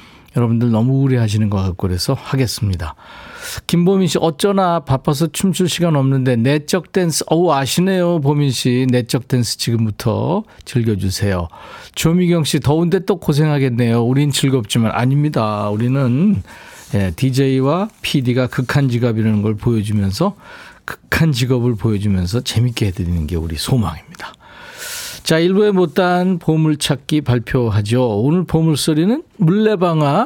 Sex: male